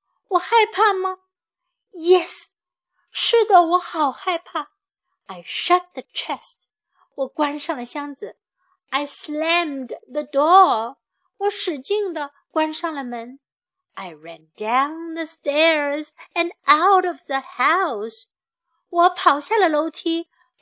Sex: female